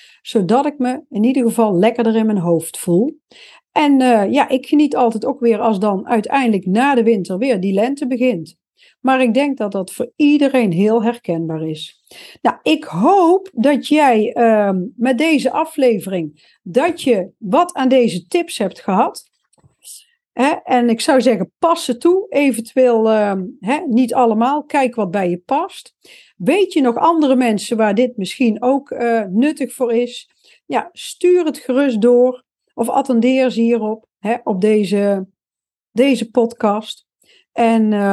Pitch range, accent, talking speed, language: 220-275 Hz, Dutch, 160 wpm, Dutch